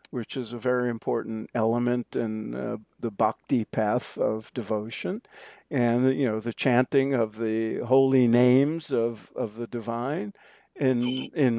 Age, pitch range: 50-69, 120-150 Hz